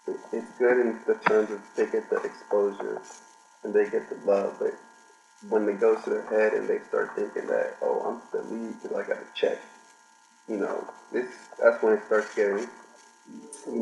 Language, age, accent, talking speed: English, 20-39, American, 195 wpm